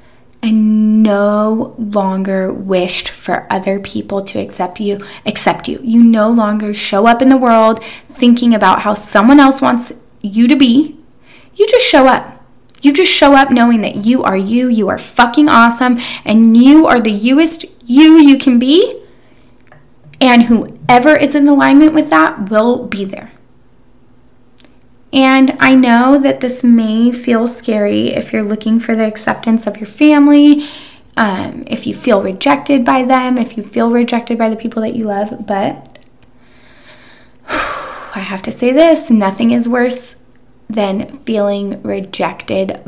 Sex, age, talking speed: female, 10-29, 155 wpm